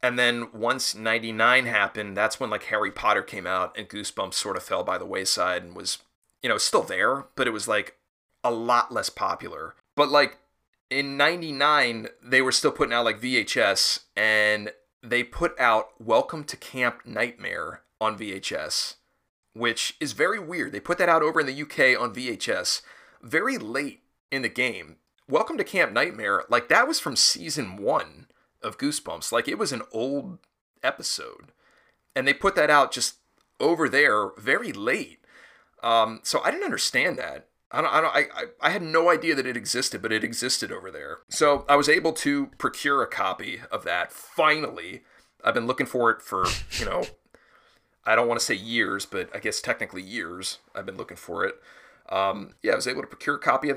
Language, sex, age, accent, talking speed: English, male, 30-49, American, 190 wpm